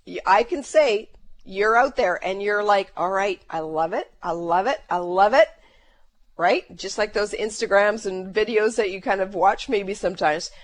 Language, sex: English, female